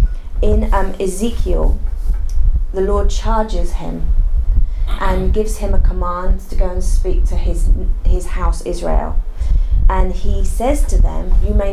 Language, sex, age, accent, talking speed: English, female, 30-49, British, 145 wpm